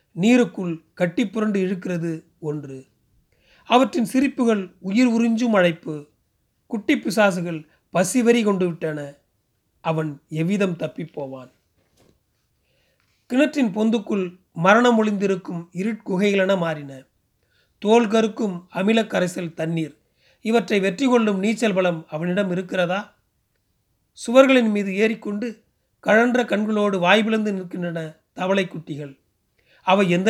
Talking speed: 90 wpm